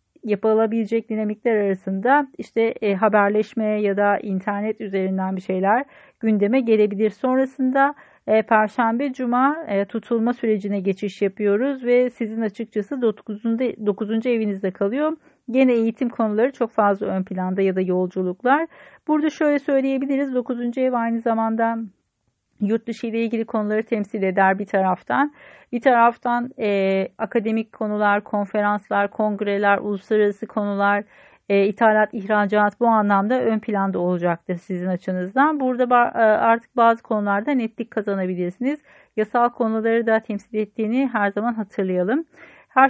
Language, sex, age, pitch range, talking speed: Turkish, female, 40-59, 200-245 Hz, 125 wpm